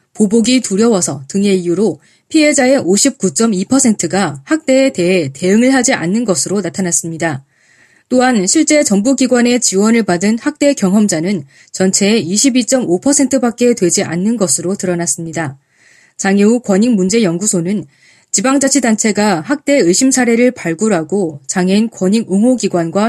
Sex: female